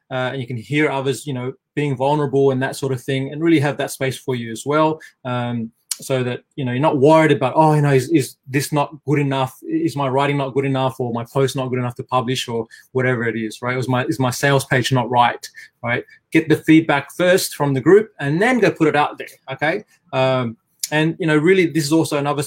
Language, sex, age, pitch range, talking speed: English, male, 20-39, 130-155 Hz, 250 wpm